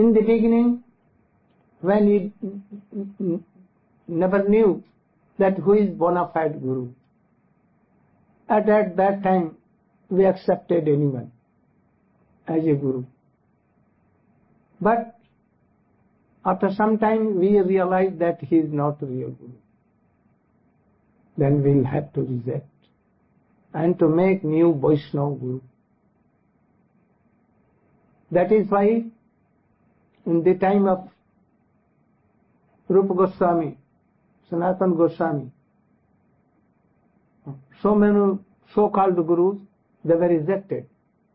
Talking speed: 95 wpm